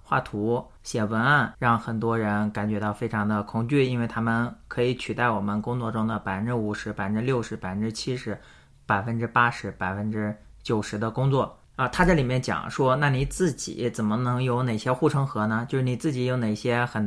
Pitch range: 105-130 Hz